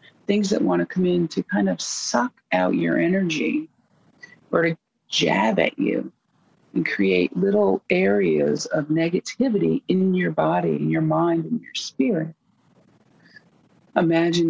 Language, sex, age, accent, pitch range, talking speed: English, female, 40-59, American, 155-205 Hz, 140 wpm